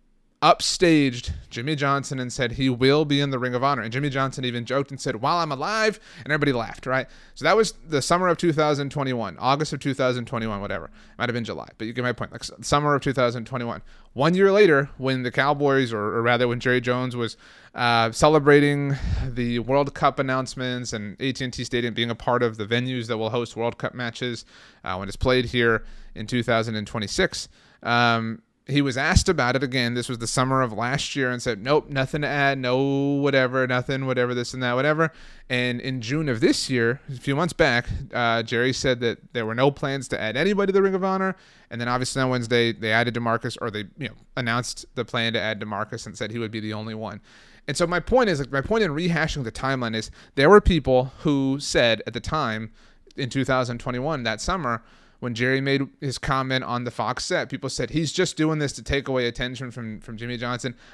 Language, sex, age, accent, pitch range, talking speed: English, male, 30-49, American, 120-140 Hz, 215 wpm